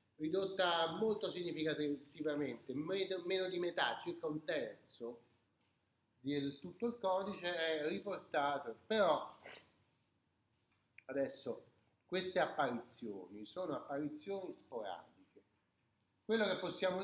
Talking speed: 90 wpm